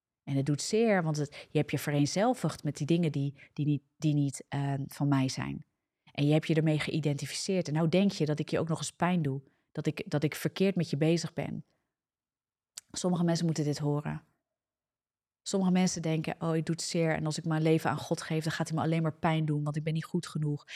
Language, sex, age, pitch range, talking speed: Dutch, female, 30-49, 150-190 Hz, 230 wpm